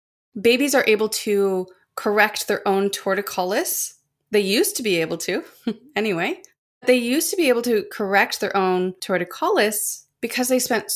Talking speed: 155 wpm